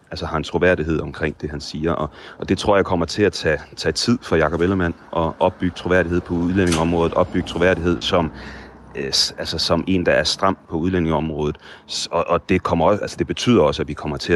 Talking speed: 215 wpm